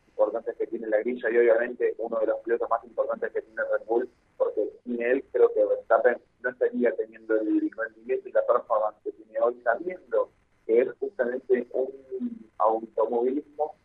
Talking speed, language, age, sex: 175 wpm, Spanish, 40-59, male